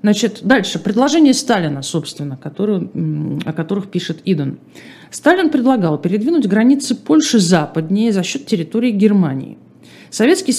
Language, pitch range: Russian, 165-245 Hz